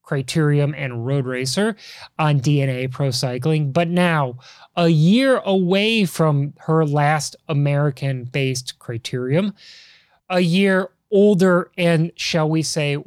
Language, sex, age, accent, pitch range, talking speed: English, male, 30-49, American, 150-185 Hz, 115 wpm